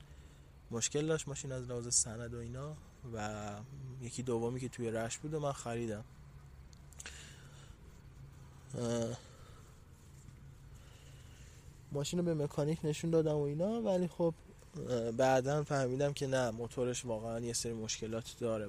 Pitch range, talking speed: 110-130 Hz, 120 wpm